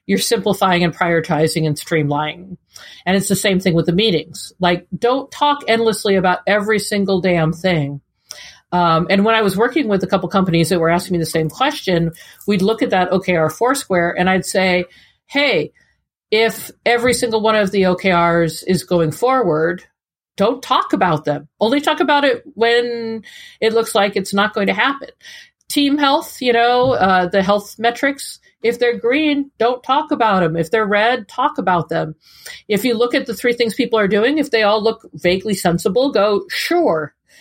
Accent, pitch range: American, 175-240 Hz